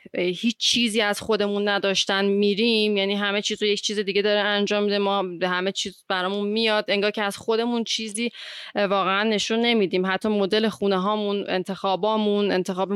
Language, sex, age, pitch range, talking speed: Persian, female, 30-49, 185-210 Hz, 165 wpm